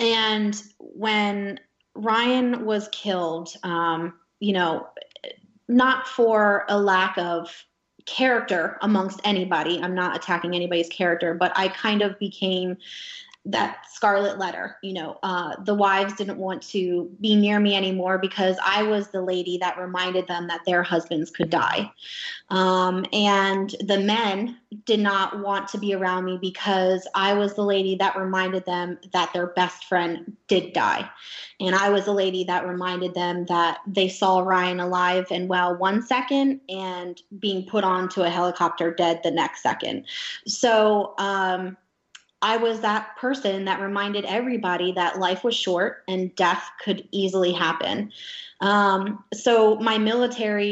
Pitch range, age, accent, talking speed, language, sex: 180-210 Hz, 20-39, American, 155 wpm, English, female